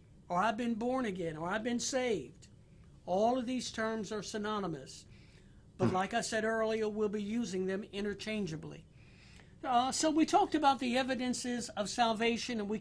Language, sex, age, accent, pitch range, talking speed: English, male, 60-79, American, 205-245 Hz, 170 wpm